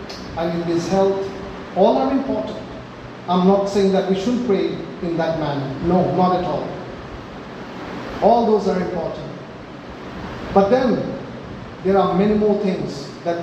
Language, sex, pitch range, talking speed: English, male, 185-235 Hz, 145 wpm